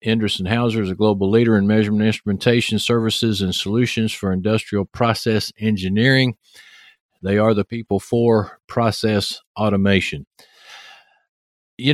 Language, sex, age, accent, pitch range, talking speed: English, male, 50-69, American, 100-120 Hz, 120 wpm